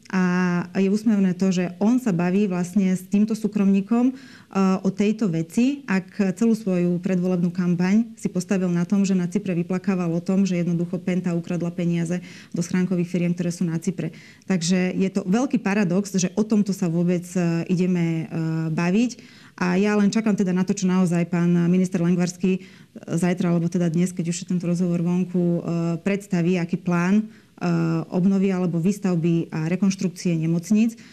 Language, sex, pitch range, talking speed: Slovak, female, 175-205 Hz, 165 wpm